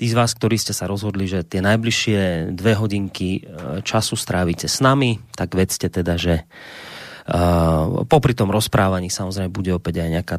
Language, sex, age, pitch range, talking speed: Slovak, male, 30-49, 90-115 Hz, 170 wpm